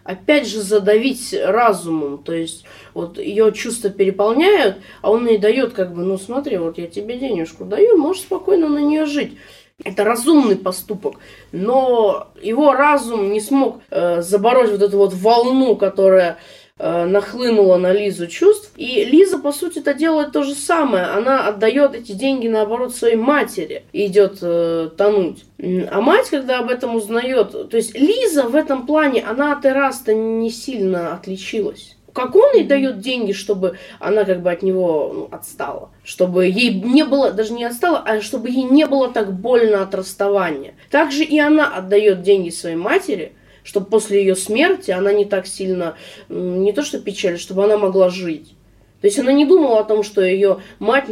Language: Russian